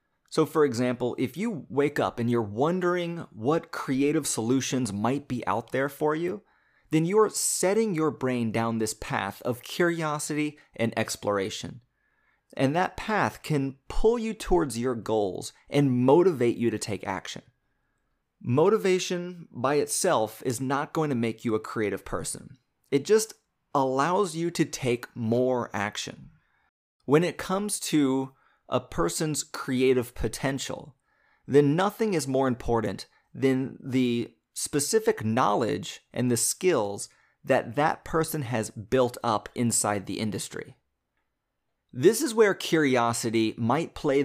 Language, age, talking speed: English, 30-49, 140 wpm